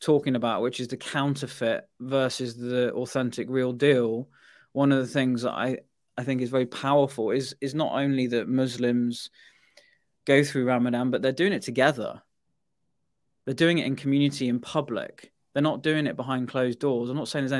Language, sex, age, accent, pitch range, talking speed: English, male, 20-39, British, 125-145 Hz, 185 wpm